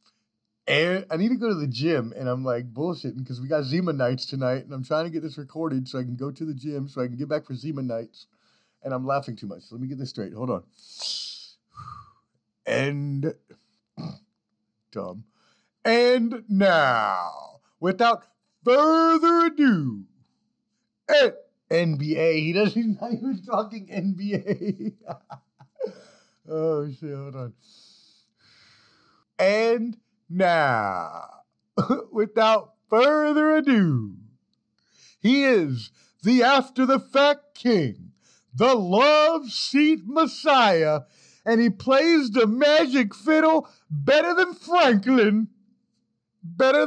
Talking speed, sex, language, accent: 125 wpm, male, English, American